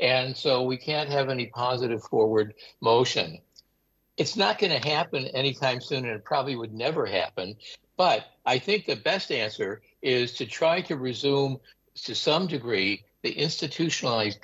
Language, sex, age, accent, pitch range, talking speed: English, male, 60-79, American, 110-150 Hz, 155 wpm